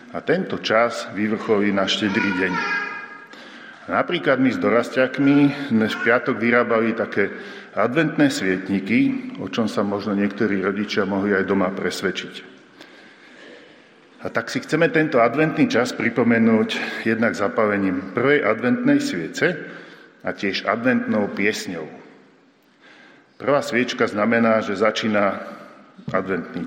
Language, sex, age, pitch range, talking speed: Slovak, male, 50-69, 100-140 Hz, 115 wpm